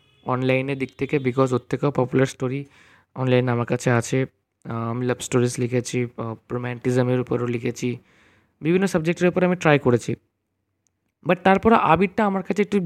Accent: Indian